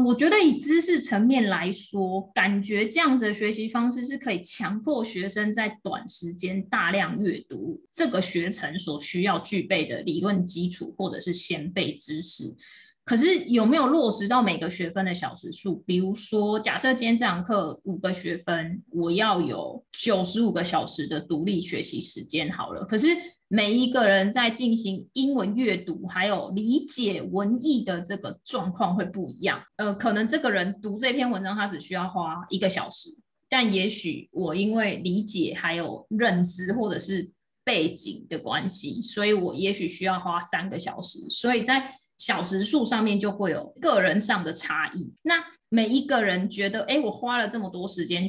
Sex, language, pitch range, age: female, Chinese, 185-250 Hz, 20-39